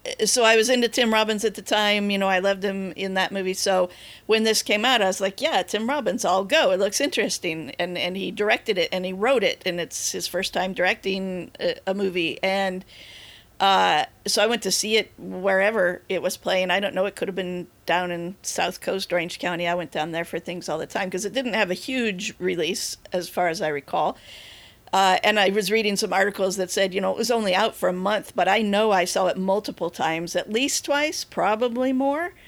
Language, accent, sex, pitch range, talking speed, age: English, American, female, 180-215 Hz, 235 wpm, 50-69